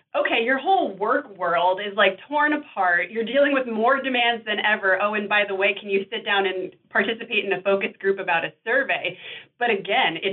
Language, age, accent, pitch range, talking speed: English, 30-49, American, 180-225 Hz, 215 wpm